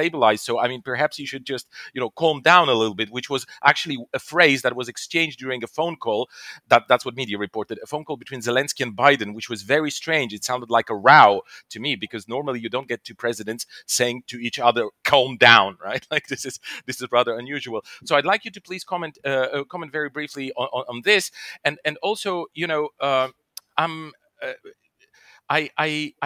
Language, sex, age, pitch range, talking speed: English, male, 40-59, 125-160 Hz, 215 wpm